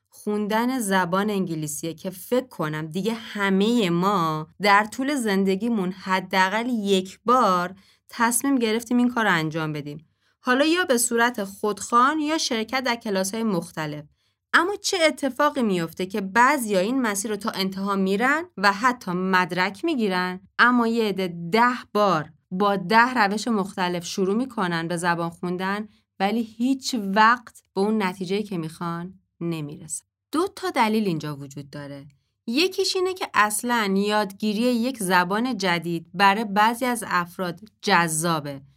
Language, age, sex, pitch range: Persian, 20-39, female, 175-240 Hz